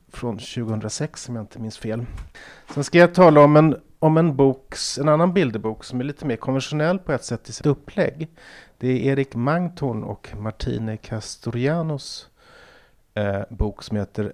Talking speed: 170 wpm